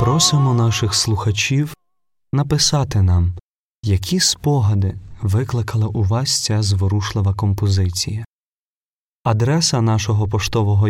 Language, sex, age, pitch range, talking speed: Ukrainian, male, 30-49, 100-120 Hz, 90 wpm